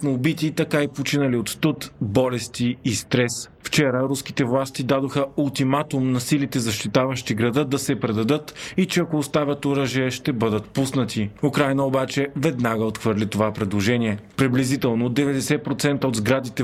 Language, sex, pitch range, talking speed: Bulgarian, male, 120-145 Hz, 145 wpm